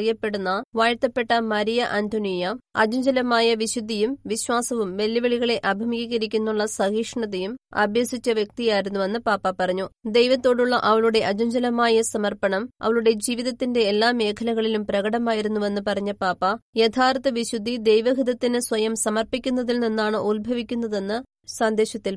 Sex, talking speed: female, 90 wpm